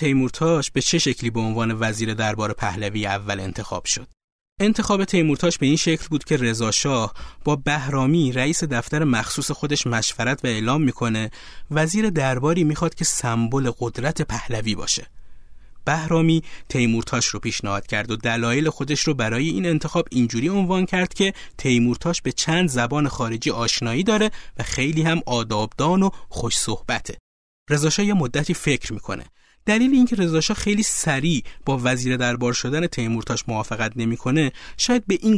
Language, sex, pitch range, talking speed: Persian, male, 115-160 Hz, 150 wpm